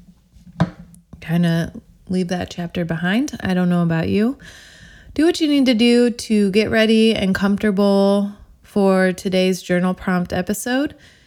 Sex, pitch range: female, 170-225 Hz